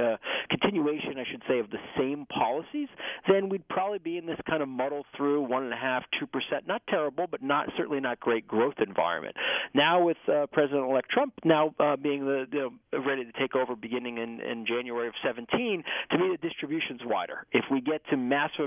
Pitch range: 125-160 Hz